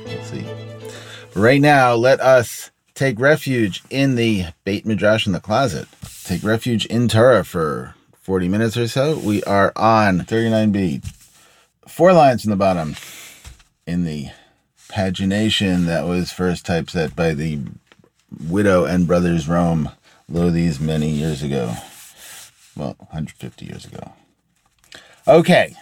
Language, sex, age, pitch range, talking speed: English, male, 30-49, 100-125 Hz, 130 wpm